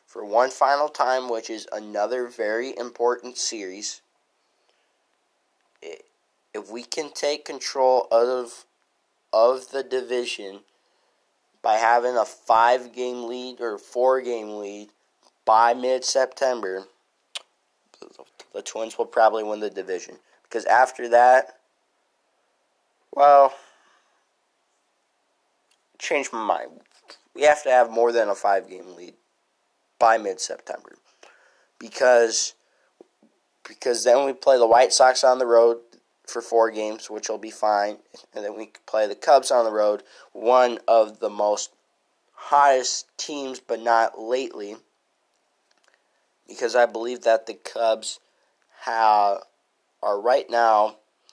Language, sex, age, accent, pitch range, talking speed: English, male, 20-39, American, 110-130 Hz, 120 wpm